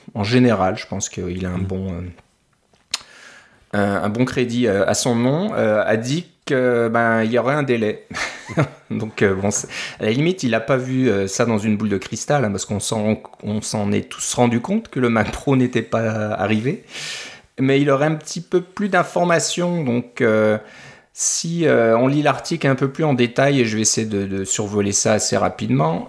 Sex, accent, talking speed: male, French, 205 wpm